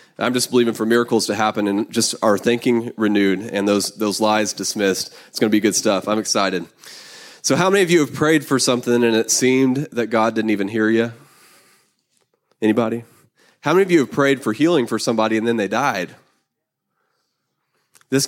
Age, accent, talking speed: 20-39, American, 195 wpm